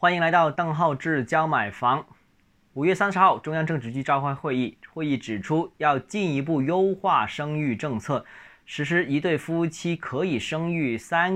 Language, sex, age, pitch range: Chinese, male, 20-39, 130-185 Hz